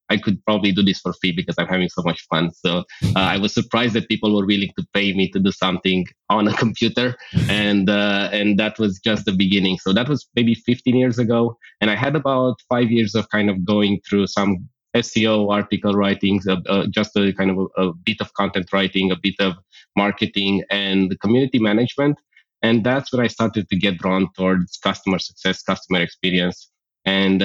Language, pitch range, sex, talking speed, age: English, 95-110 Hz, male, 210 wpm, 20-39